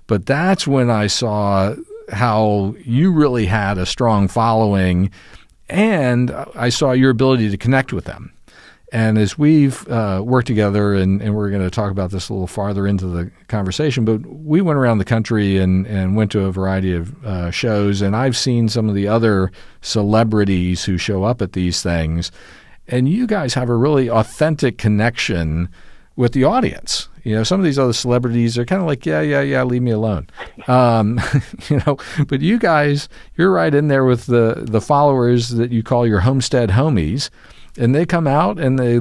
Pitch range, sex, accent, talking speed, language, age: 100-130 Hz, male, American, 190 wpm, English, 50-69